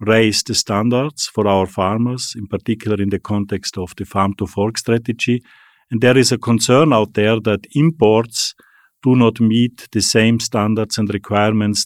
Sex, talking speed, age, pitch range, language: male, 160 wpm, 50-69, 105-125 Hz, English